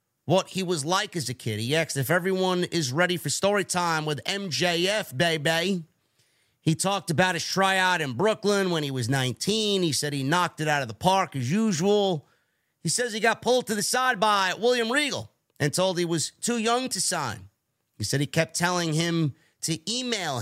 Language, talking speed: English, 200 wpm